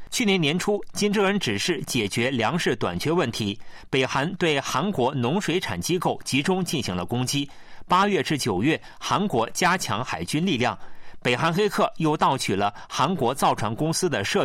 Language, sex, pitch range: Chinese, male, 125-180 Hz